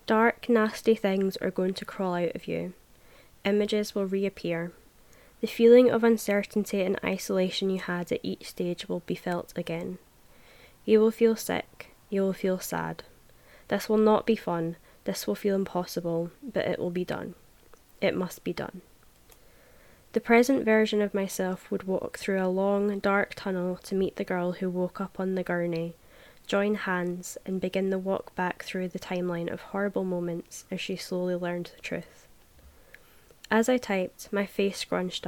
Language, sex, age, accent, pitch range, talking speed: English, female, 10-29, British, 180-200 Hz, 170 wpm